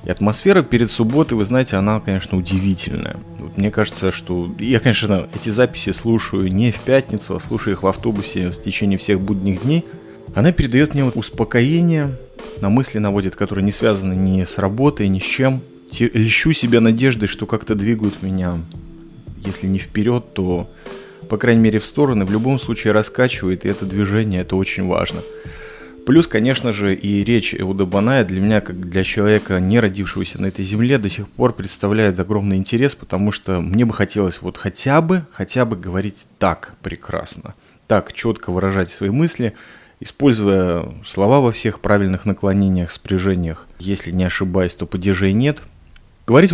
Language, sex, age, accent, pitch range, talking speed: Russian, male, 30-49, native, 95-120 Hz, 165 wpm